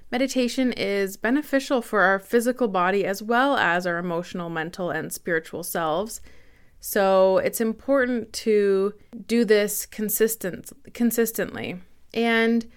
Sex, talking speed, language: female, 115 wpm, English